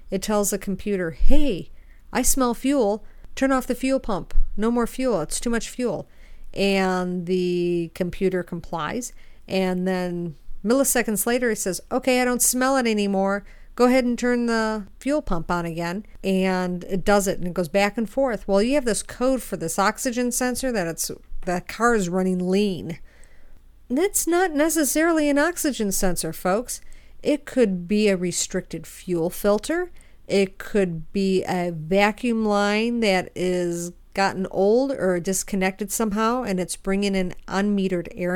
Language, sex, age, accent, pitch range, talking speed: English, female, 50-69, American, 185-245 Hz, 165 wpm